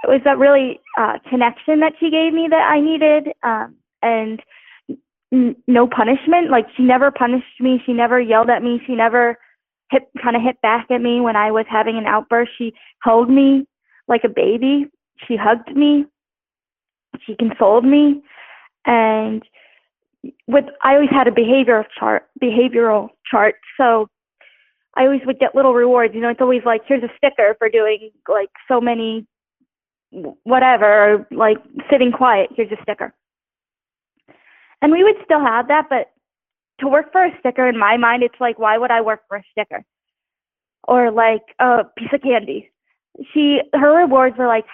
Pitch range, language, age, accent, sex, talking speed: 230-275 Hz, English, 20-39, American, female, 170 wpm